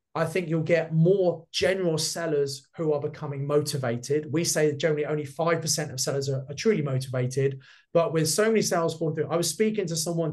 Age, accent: 30-49, British